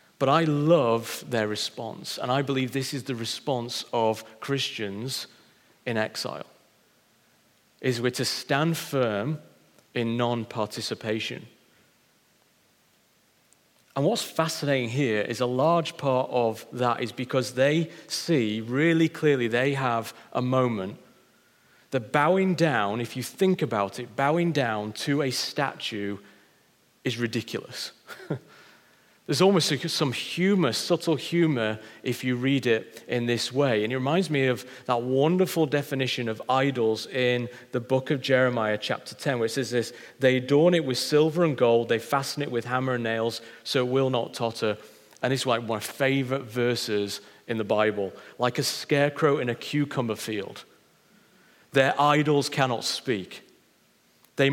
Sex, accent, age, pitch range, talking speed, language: male, British, 40-59, 115-145 Hz, 145 wpm, English